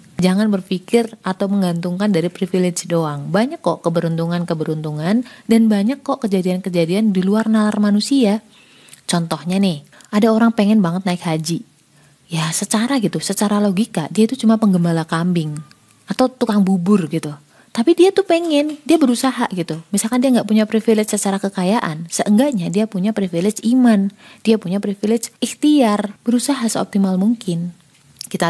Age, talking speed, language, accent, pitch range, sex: 30-49, 140 wpm, Indonesian, native, 175-225 Hz, female